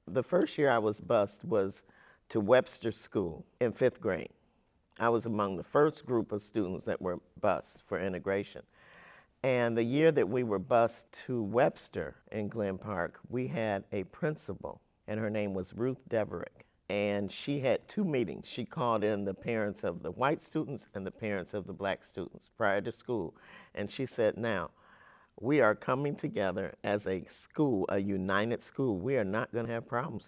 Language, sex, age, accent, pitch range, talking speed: English, male, 50-69, American, 105-130 Hz, 185 wpm